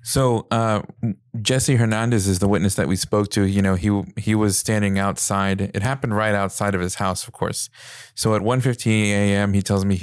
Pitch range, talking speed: 100-110 Hz, 210 wpm